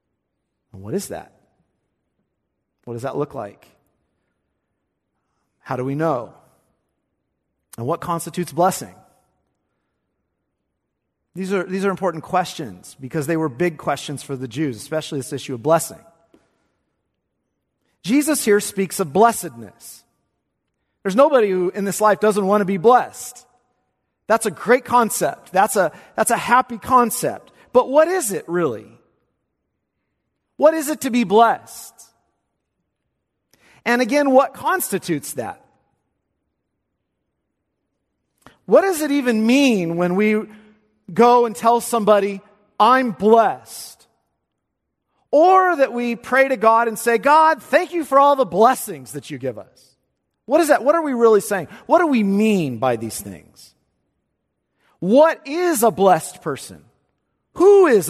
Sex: male